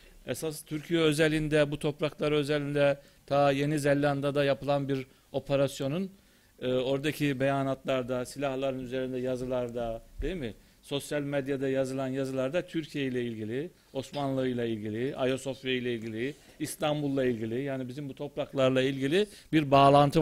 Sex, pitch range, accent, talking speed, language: male, 120-150 Hz, native, 130 wpm, Turkish